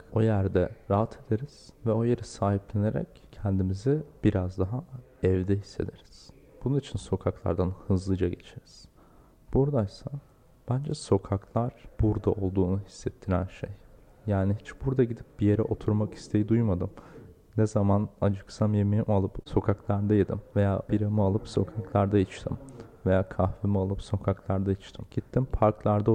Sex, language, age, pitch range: male, Turkish, 40-59, 100-120 Hz